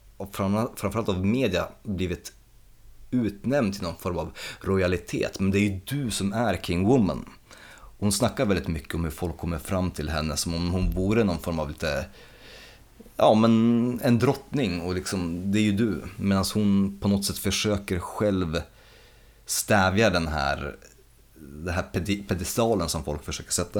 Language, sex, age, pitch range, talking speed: Swedish, male, 30-49, 85-105 Hz, 165 wpm